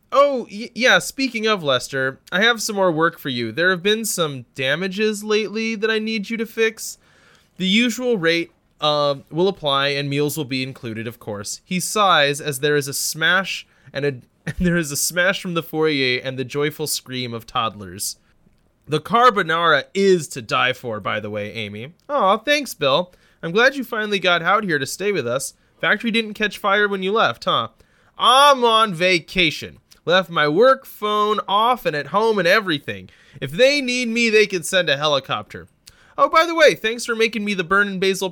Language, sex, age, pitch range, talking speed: English, male, 20-39, 140-210 Hz, 185 wpm